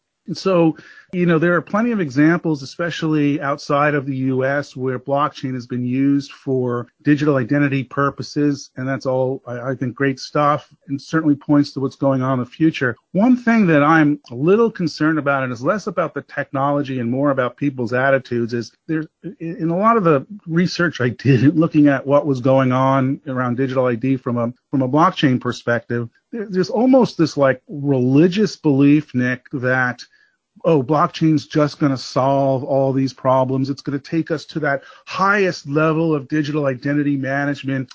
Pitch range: 130-155 Hz